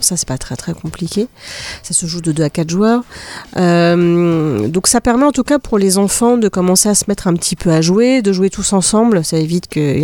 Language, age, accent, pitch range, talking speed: French, 40-59, French, 165-220 Hz, 245 wpm